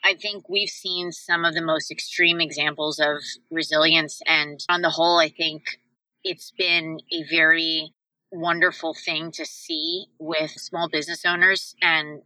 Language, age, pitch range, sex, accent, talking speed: English, 20-39, 155-170 Hz, female, American, 150 wpm